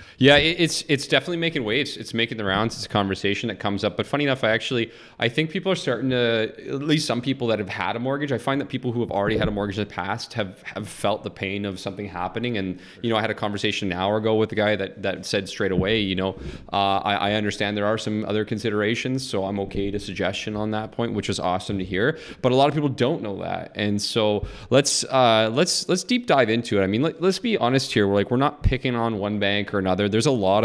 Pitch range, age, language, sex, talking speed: 100-125 Hz, 20-39, English, male, 270 wpm